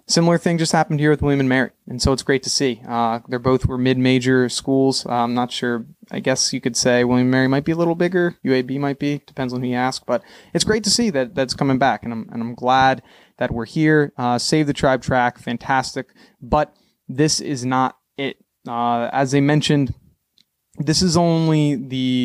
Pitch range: 125-145 Hz